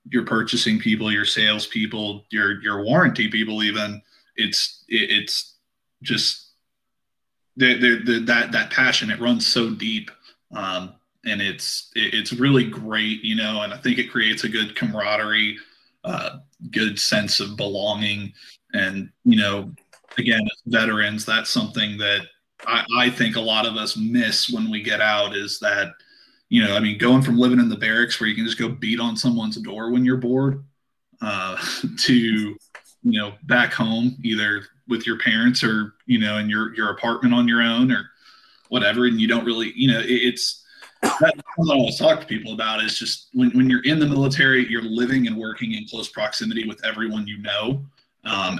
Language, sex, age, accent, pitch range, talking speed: English, male, 20-39, American, 110-125 Hz, 175 wpm